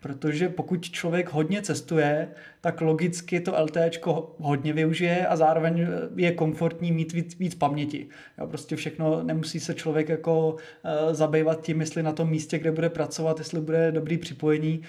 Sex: male